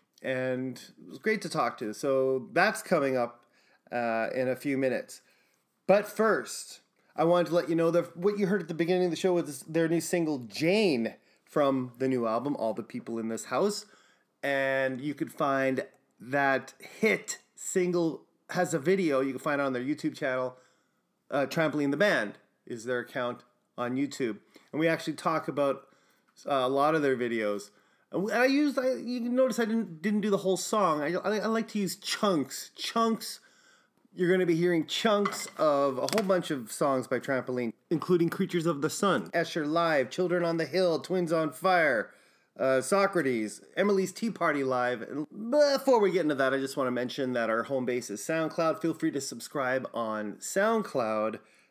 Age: 30-49